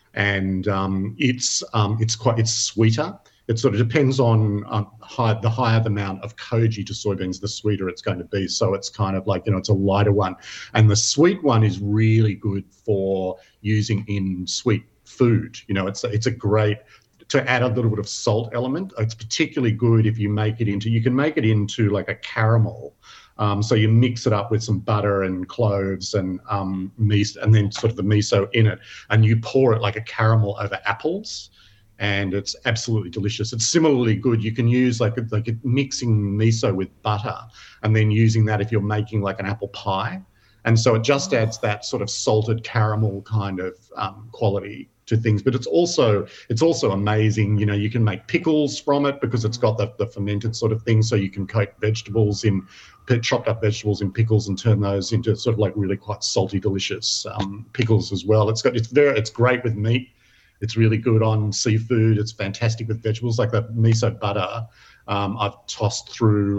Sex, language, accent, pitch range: male, English, Australian, 100-115 Hz